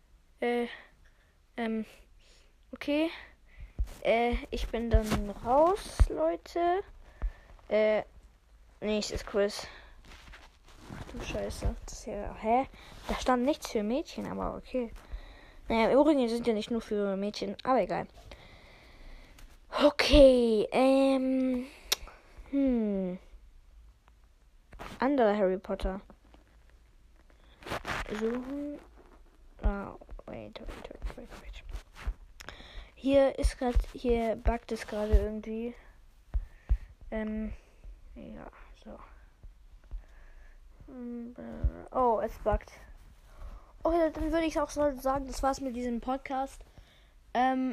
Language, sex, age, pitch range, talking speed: German, female, 20-39, 195-265 Hz, 85 wpm